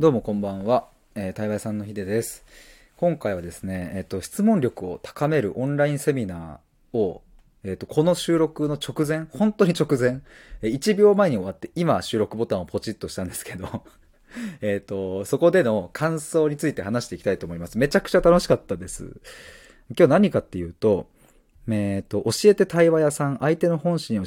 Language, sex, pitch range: Japanese, male, 100-160 Hz